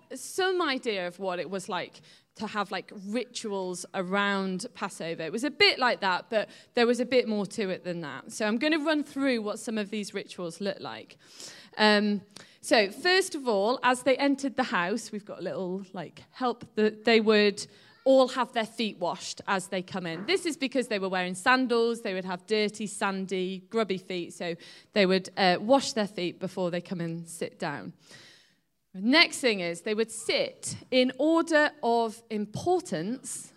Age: 20-39